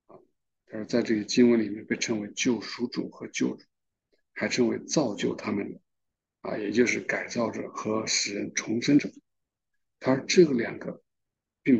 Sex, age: male, 60-79